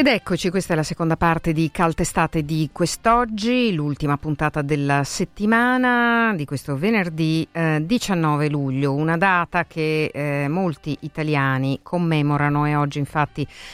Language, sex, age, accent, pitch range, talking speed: Italian, female, 50-69, native, 135-165 Hz, 135 wpm